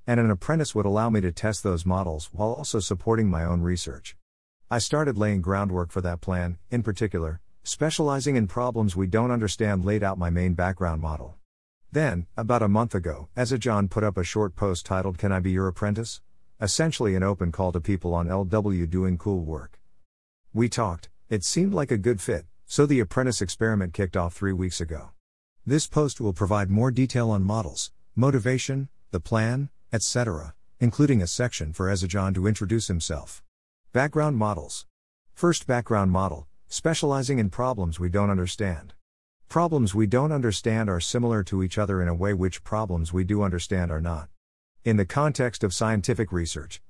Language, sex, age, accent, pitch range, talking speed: English, male, 50-69, American, 90-115 Hz, 180 wpm